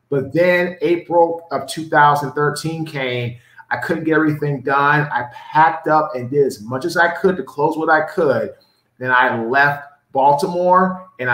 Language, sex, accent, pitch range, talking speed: English, male, American, 125-155 Hz, 165 wpm